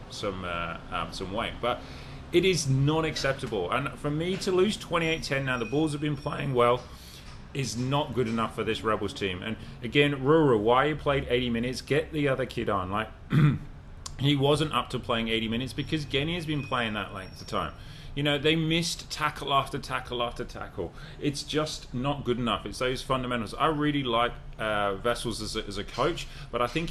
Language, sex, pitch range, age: English, male, 105-140 Hz, 30-49